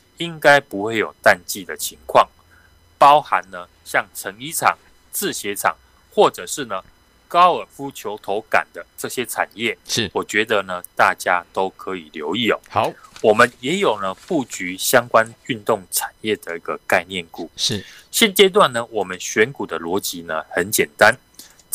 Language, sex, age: Chinese, male, 30-49